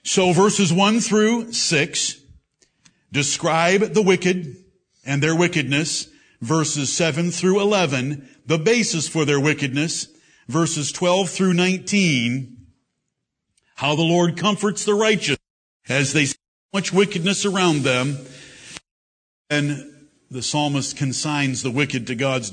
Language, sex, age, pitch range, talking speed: English, male, 50-69, 140-190 Hz, 120 wpm